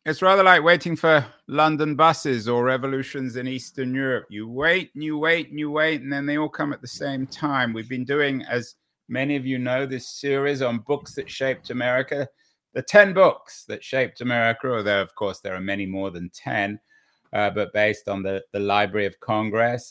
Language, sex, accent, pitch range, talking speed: English, male, British, 115-160 Hz, 205 wpm